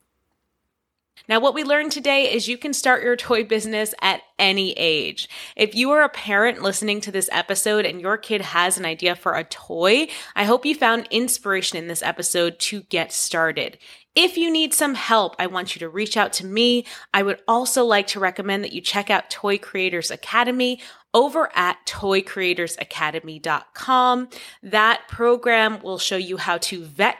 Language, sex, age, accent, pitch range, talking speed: English, female, 20-39, American, 180-245 Hz, 180 wpm